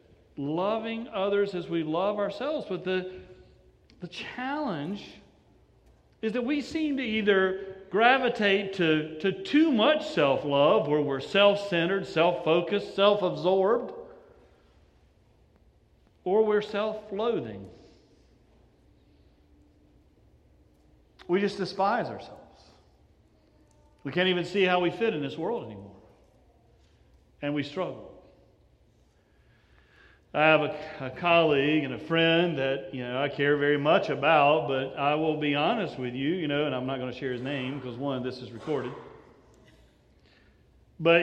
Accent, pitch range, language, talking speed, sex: American, 125-195 Hz, English, 135 wpm, male